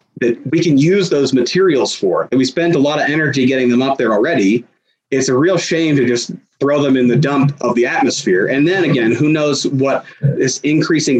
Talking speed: 220 wpm